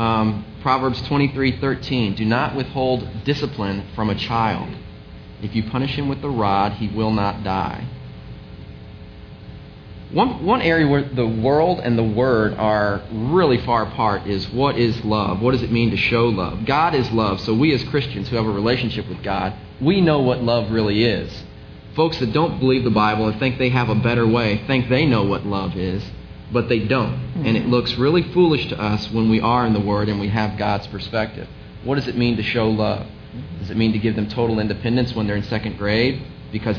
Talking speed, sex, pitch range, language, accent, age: 205 wpm, male, 105-130 Hz, English, American, 30-49